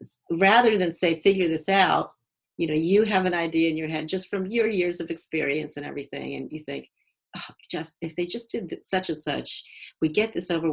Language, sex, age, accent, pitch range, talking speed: English, female, 50-69, American, 155-195 Hz, 215 wpm